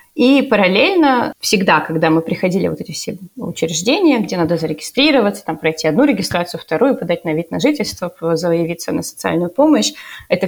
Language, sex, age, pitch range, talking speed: Russian, female, 20-39, 175-230 Hz, 160 wpm